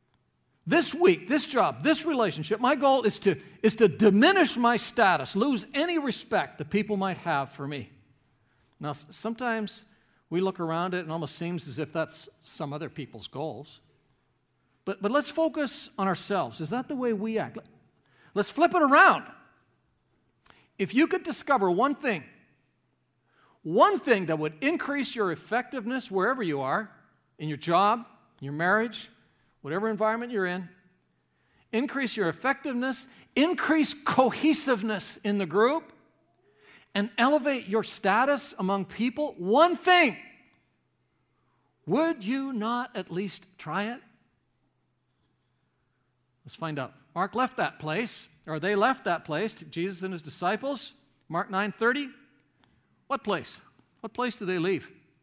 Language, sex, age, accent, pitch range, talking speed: English, male, 50-69, American, 165-260 Hz, 140 wpm